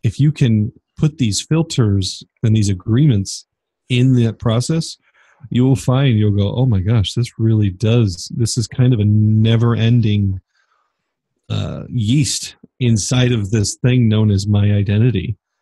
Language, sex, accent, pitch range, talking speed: English, male, American, 105-125 Hz, 150 wpm